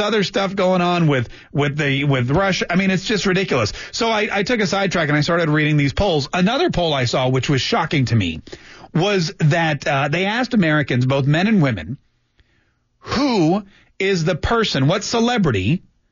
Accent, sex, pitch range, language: American, male, 140-195 Hz, English